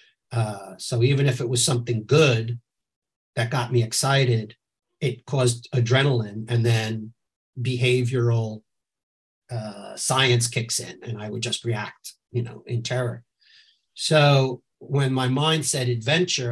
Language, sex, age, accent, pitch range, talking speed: English, male, 50-69, American, 115-130 Hz, 135 wpm